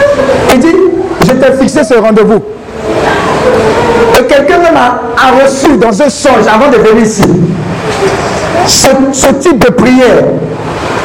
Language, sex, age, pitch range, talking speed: French, male, 60-79, 195-255 Hz, 115 wpm